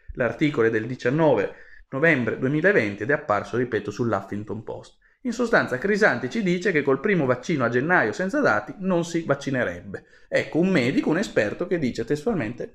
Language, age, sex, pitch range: Italian, 30-49, male, 115-155 Hz